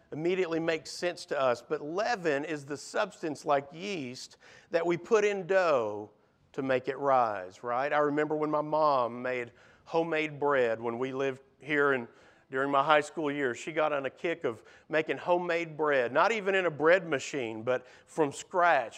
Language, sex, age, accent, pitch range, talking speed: English, male, 50-69, American, 140-180 Hz, 185 wpm